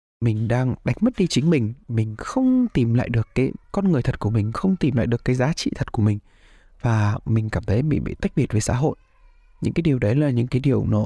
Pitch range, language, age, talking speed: 105-145 Hz, Vietnamese, 20-39, 260 wpm